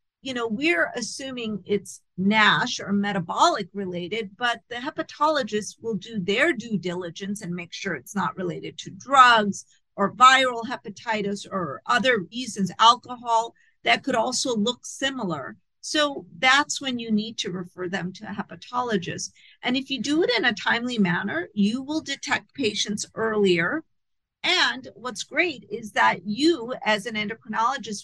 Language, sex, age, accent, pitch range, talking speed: English, female, 50-69, American, 200-270 Hz, 150 wpm